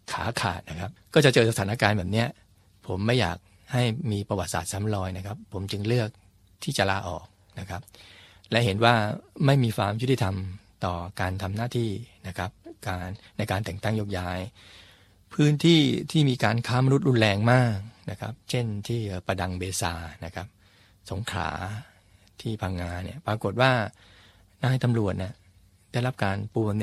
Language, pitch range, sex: Thai, 95-115 Hz, male